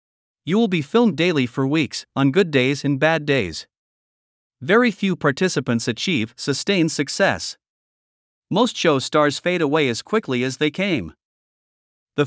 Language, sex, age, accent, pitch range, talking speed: English, male, 50-69, American, 135-175 Hz, 145 wpm